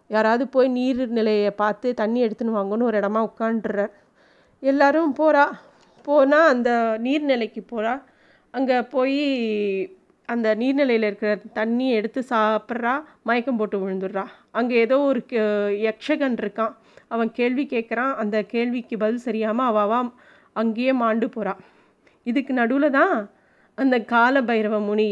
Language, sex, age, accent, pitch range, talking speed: Tamil, female, 30-49, native, 215-260 Hz, 120 wpm